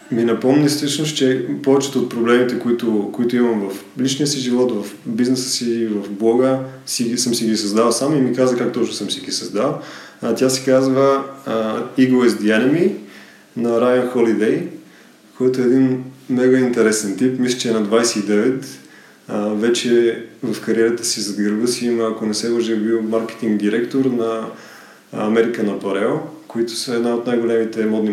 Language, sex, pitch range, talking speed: Bulgarian, male, 110-125 Hz, 170 wpm